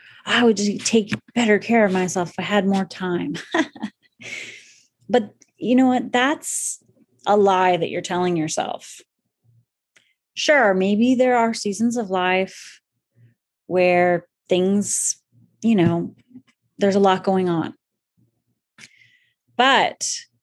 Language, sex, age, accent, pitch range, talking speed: English, female, 30-49, American, 180-230 Hz, 120 wpm